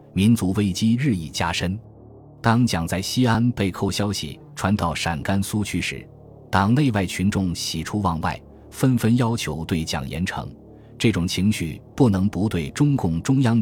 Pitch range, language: 85-115 Hz, Chinese